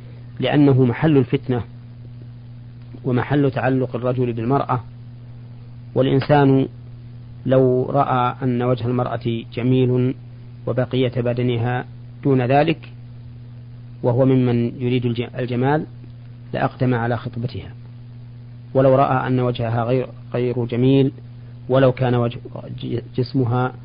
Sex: male